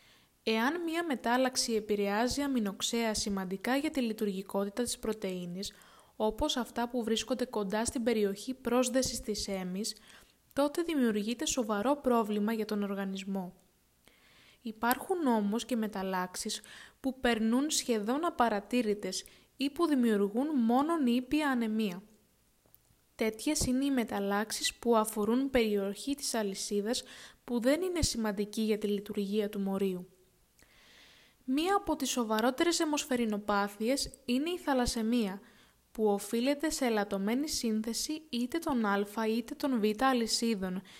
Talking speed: 115 wpm